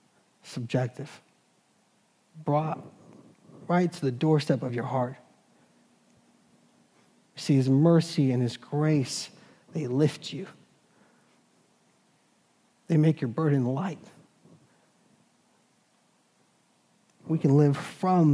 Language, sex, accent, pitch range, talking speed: English, male, American, 135-175 Hz, 90 wpm